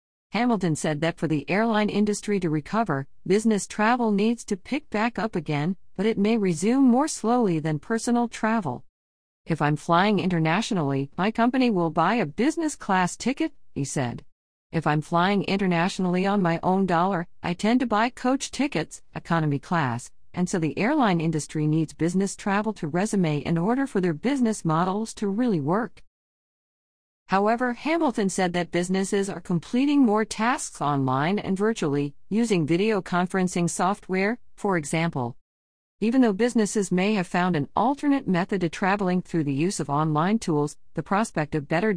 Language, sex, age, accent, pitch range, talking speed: English, female, 50-69, American, 160-215 Hz, 165 wpm